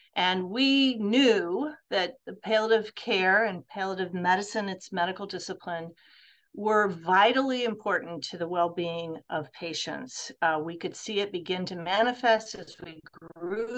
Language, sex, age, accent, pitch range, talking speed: English, female, 40-59, American, 180-235 Hz, 140 wpm